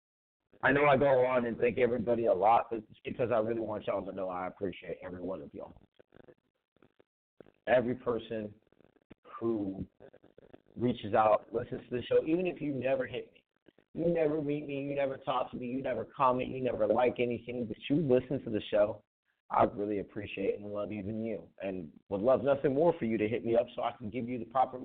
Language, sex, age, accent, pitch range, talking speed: English, male, 30-49, American, 110-135 Hz, 210 wpm